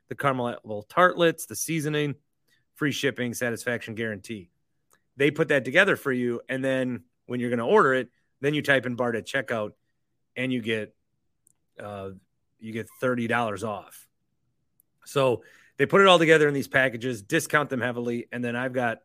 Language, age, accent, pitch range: English, 30-49, American, 120-155 Hz